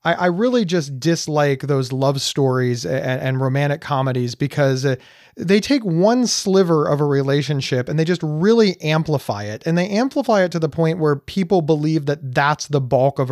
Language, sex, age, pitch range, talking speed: English, male, 30-49, 140-180 Hz, 175 wpm